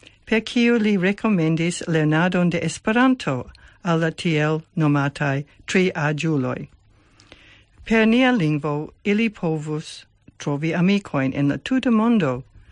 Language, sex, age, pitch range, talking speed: English, female, 60-79, 140-205 Hz, 110 wpm